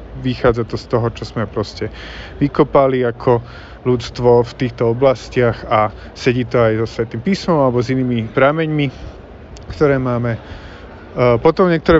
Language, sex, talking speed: Slovak, male, 140 wpm